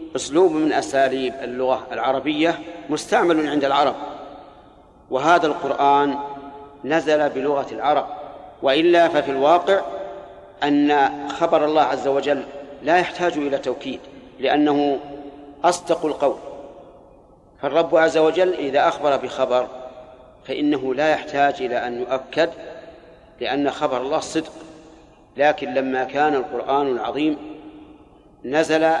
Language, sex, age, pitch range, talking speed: Arabic, male, 50-69, 140-160 Hz, 105 wpm